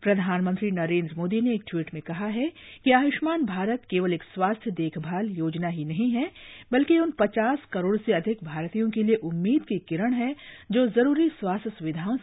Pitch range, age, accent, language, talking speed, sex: 165-245 Hz, 50-69, native, Hindi, 180 wpm, female